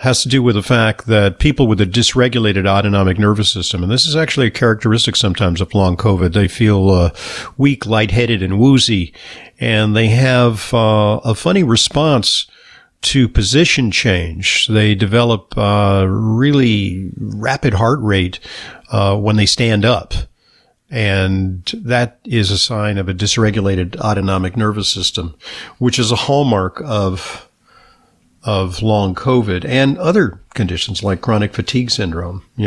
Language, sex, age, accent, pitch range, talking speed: English, male, 50-69, American, 95-120 Hz, 145 wpm